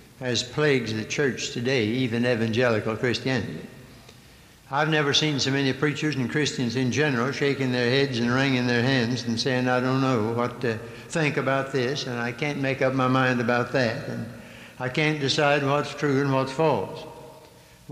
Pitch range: 125-155 Hz